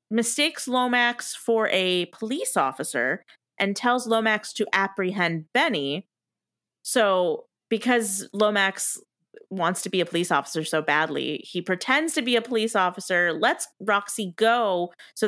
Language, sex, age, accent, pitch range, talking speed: English, female, 30-49, American, 175-225 Hz, 135 wpm